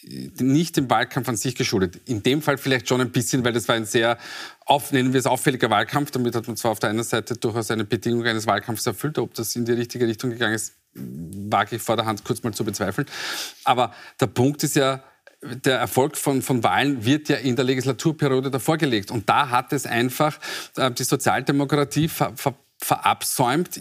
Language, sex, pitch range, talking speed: German, male, 120-145 Hz, 205 wpm